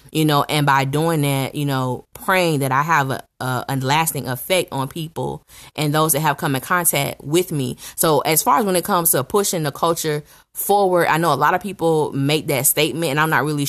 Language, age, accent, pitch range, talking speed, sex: English, 10-29, American, 135-155 Hz, 230 wpm, female